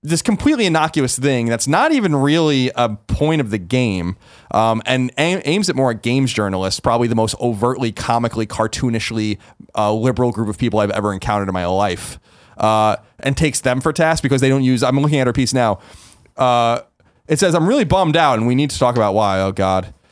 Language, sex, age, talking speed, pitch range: English, male, 30-49, 210 wpm, 115-175 Hz